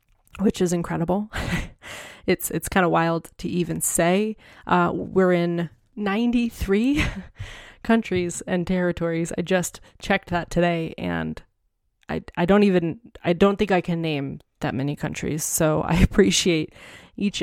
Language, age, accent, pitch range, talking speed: English, 20-39, American, 165-195 Hz, 140 wpm